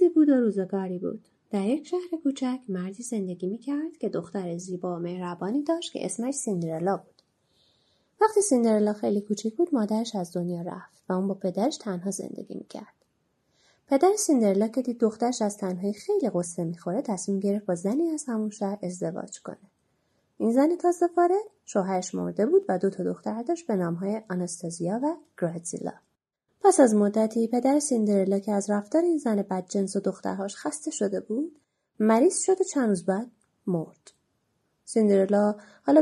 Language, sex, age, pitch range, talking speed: Persian, female, 30-49, 185-275 Hz, 160 wpm